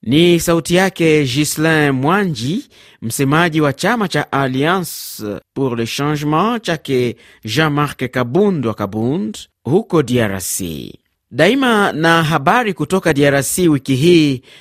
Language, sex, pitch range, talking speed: Swahili, male, 125-160 Hz, 110 wpm